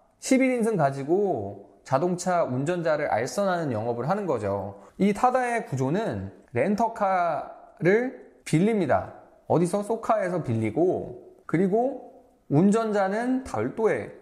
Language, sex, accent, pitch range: Korean, male, native, 140-205 Hz